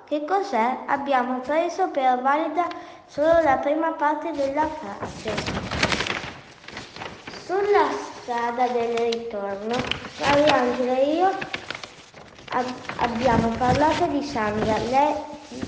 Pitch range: 240-305 Hz